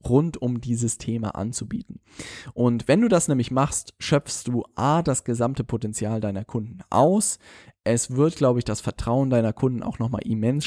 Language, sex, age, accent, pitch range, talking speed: German, male, 10-29, German, 110-130 Hz, 180 wpm